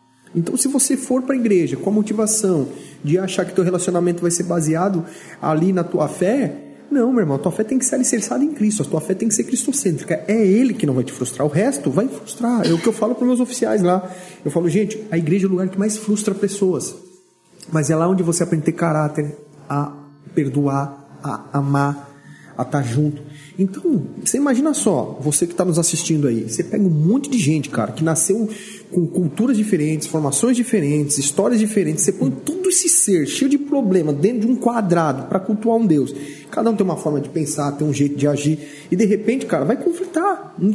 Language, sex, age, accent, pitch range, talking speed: Portuguese, male, 40-59, Brazilian, 160-230 Hz, 220 wpm